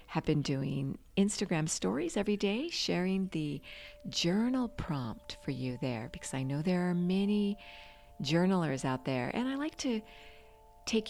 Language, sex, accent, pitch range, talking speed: English, female, American, 130-195 Hz, 150 wpm